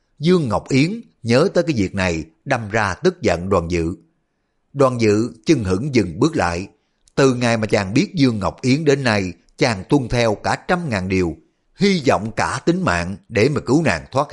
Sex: male